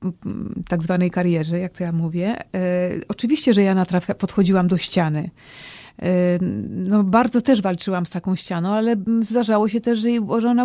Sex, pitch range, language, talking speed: female, 185-220 Hz, Polish, 180 wpm